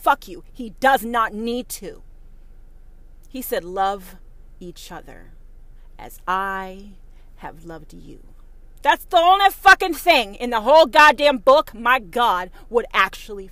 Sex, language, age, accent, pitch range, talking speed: female, English, 30-49, American, 190-290 Hz, 140 wpm